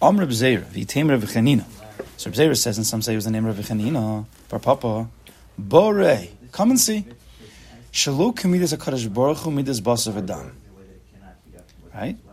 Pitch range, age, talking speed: 110-155 Hz, 30-49, 150 wpm